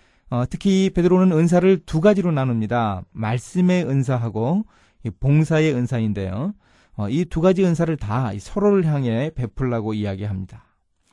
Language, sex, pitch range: Korean, male, 110-165 Hz